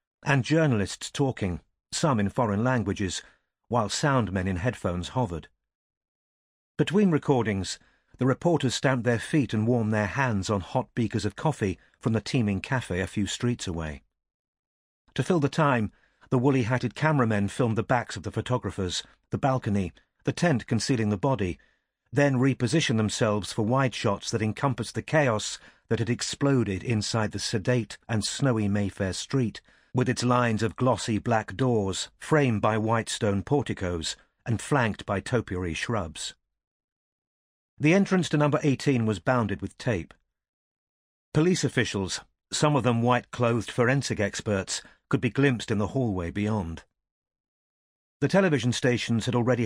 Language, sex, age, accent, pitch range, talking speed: English, male, 50-69, British, 105-130 Hz, 150 wpm